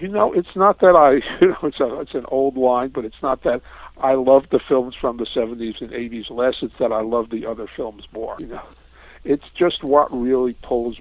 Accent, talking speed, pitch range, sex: American, 235 wpm, 115-155 Hz, male